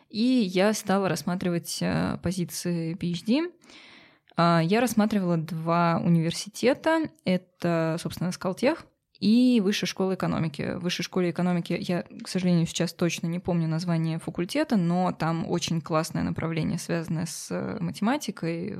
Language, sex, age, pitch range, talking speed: Russian, female, 20-39, 170-205 Hz, 120 wpm